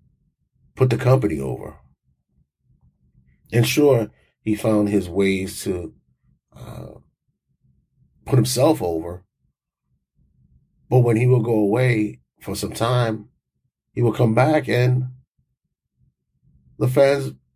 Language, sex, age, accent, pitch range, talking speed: English, male, 30-49, American, 90-115 Hz, 105 wpm